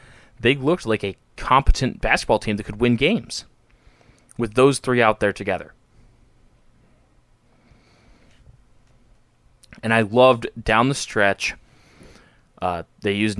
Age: 20-39